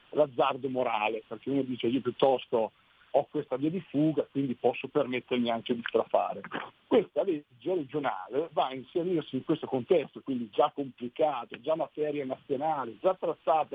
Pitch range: 130-160 Hz